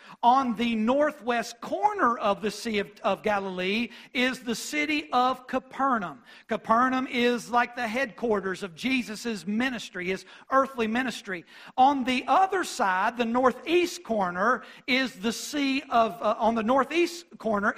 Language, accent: English, American